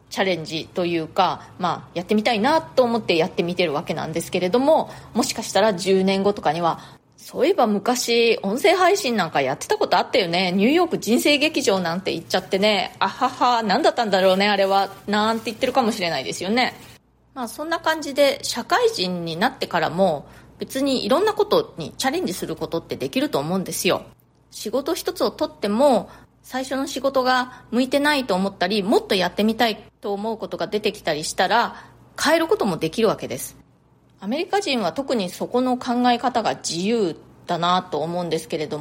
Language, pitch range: Japanese, 185-270 Hz